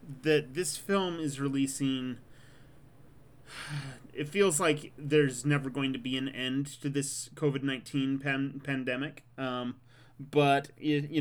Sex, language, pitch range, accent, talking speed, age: male, English, 125-145 Hz, American, 125 wpm, 30-49